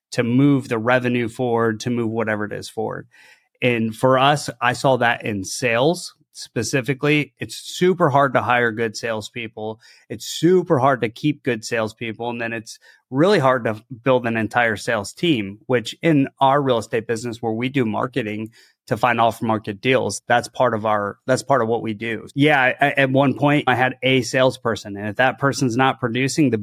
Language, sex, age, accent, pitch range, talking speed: English, male, 30-49, American, 115-135 Hz, 190 wpm